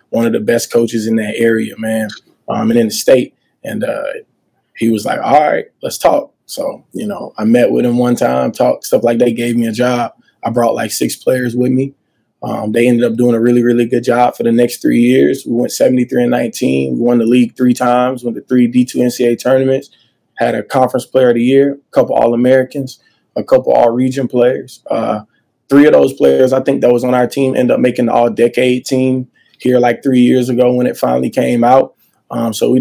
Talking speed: 230 wpm